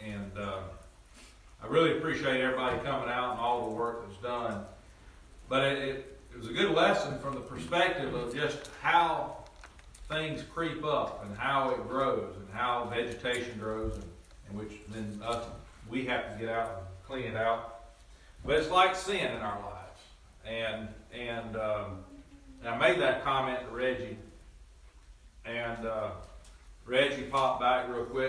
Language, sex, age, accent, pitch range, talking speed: English, male, 40-59, American, 100-125 Hz, 165 wpm